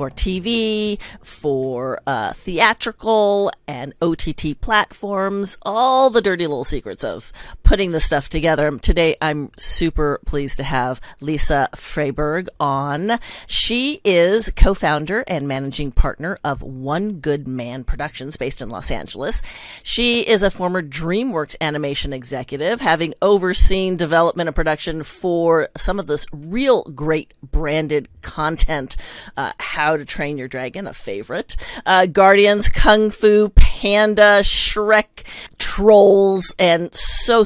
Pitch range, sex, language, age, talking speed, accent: 150-200 Hz, female, English, 40-59, 125 wpm, American